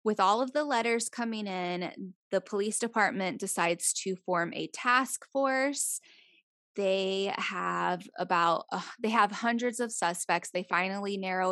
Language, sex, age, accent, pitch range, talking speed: English, female, 10-29, American, 180-235 Hz, 145 wpm